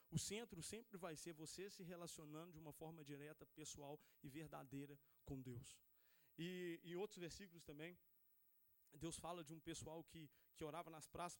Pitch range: 145-170 Hz